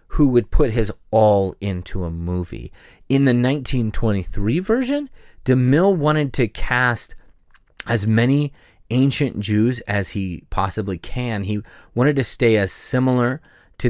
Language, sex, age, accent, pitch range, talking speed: English, male, 30-49, American, 105-145 Hz, 135 wpm